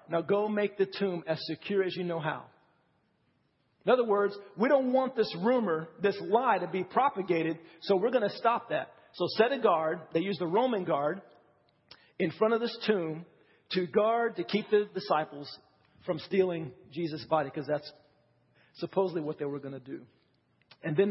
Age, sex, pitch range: 40-59, male, 155-200 Hz